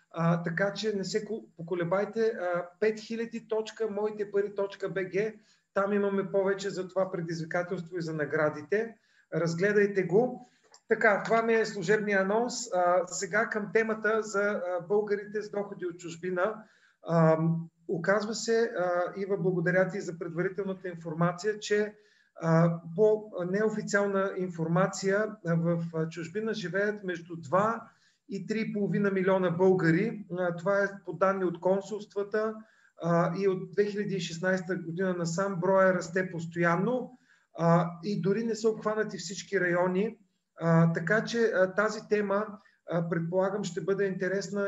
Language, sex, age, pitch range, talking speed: Bulgarian, male, 40-59, 175-205 Hz, 120 wpm